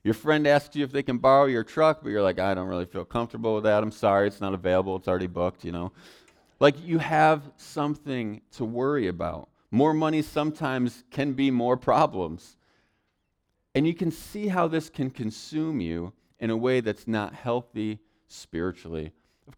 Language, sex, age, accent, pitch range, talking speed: English, male, 40-59, American, 90-130 Hz, 185 wpm